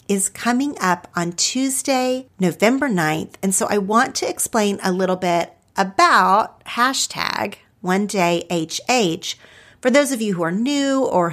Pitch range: 185-260 Hz